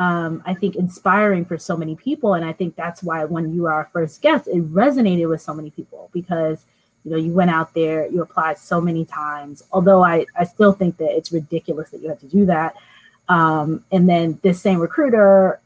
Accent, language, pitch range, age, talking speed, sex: American, English, 165-195 Hz, 20-39, 220 wpm, female